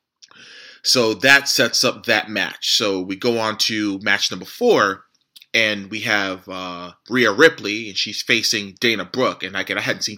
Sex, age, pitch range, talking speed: male, 30-49, 100-125 Hz, 175 wpm